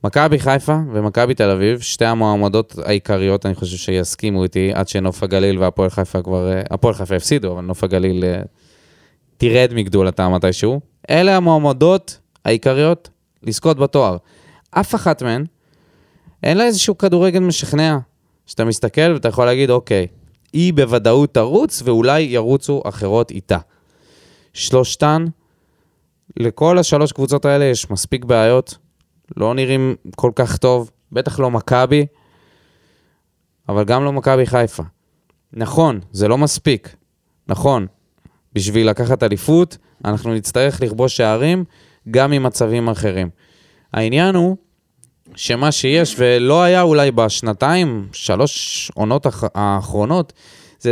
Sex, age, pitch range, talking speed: male, 20-39, 100-145 Hz, 120 wpm